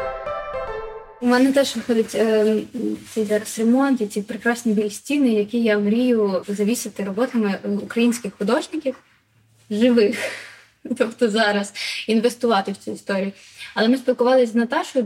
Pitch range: 205-250 Hz